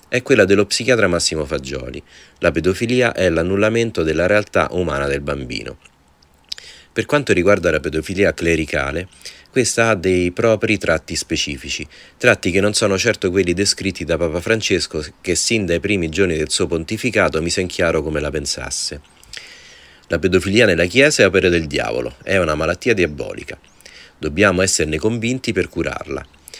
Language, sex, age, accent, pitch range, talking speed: Italian, male, 40-59, native, 75-105 Hz, 155 wpm